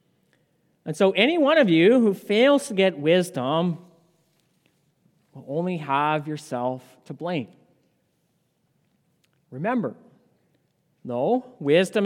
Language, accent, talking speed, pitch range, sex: English, American, 100 wpm, 150-195 Hz, male